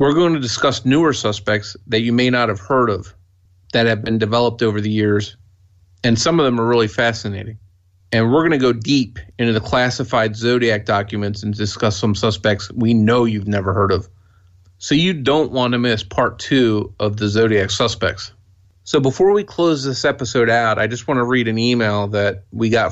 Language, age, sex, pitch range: English, 30-49, male, 100-125 Hz